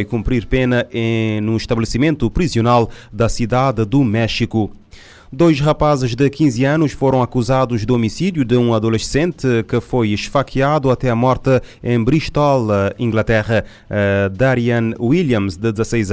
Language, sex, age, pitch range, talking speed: Portuguese, male, 30-49, 110-130 Hz, 125 wpm